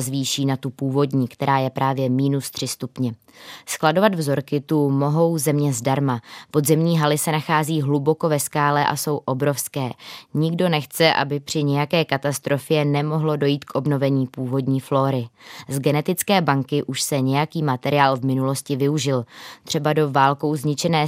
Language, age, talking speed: Czech, 20-39, 150 wpm